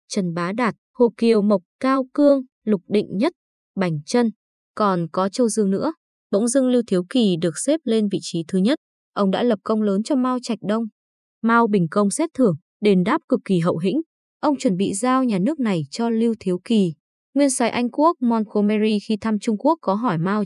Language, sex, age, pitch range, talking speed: Vietnamese, female, 20-39, 195-245 Hz, 215 wpm